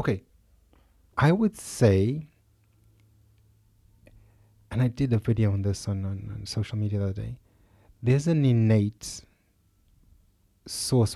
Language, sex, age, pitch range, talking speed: English, male, 30-49, 100-120 Hz, 125 wpm